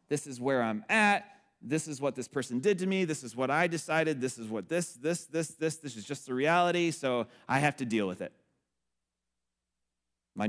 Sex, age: male, 30-49